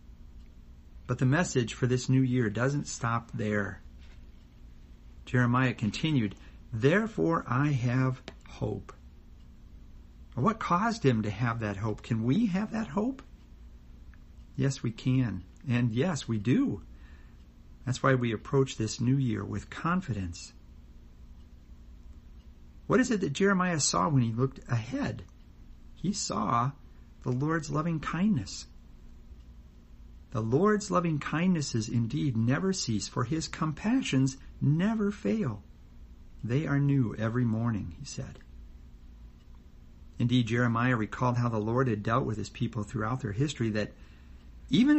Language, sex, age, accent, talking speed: English, male, 50-69, American, 125 wpm